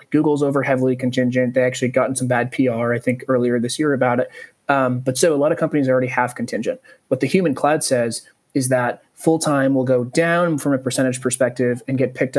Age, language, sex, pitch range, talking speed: 30-49, German, male, 125-140 Hz, 225 wpm